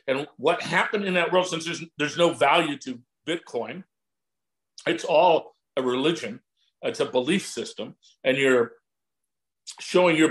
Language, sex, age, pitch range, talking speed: English, male, 50-69, 160-225 Hz, 145 wpm